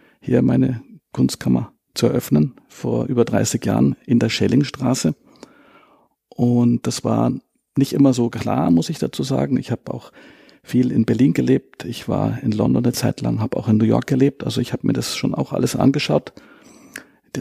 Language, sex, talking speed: German, male, 185 wpm